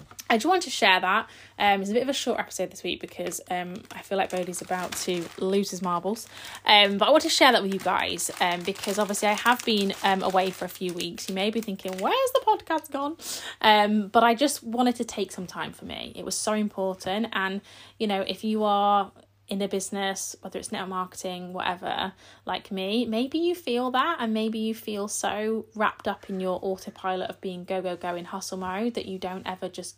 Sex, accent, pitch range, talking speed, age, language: female, British, 185-235 Hz, 230 wpm, 20-39, English